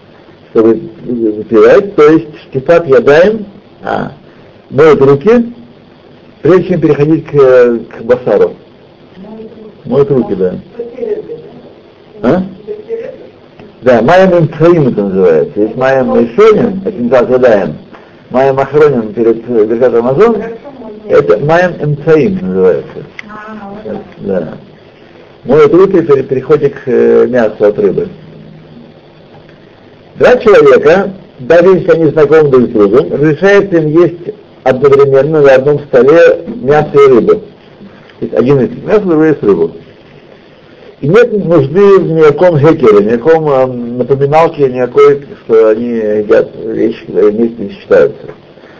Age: 60-79